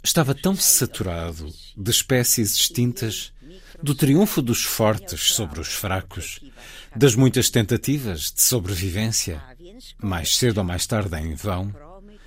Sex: male